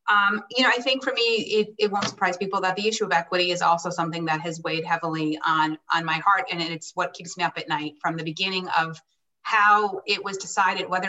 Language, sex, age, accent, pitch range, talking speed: English, female, 30-49, American, 175-230 Hz, 245 wpm